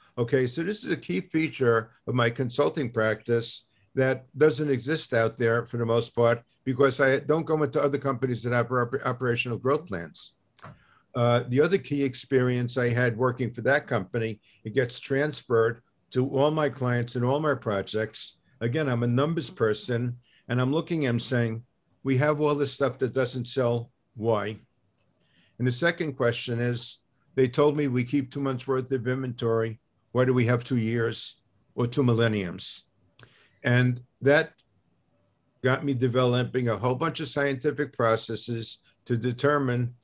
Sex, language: male, English